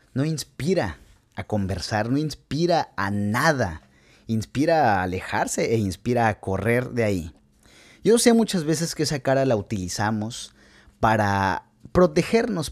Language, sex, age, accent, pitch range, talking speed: Spanish, male, 30-49, Mexican, 105-150 Hz, 130 wpm